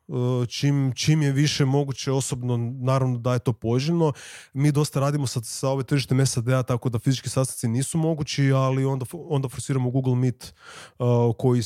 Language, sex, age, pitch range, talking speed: Croatian, male, 30-49, 120-140 Hz, 170 wpm